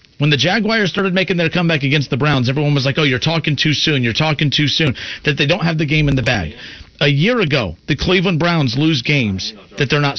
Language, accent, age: English, American, 40-59